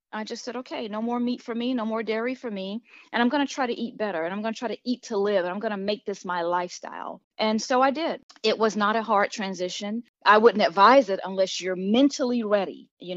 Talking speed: 265 wpm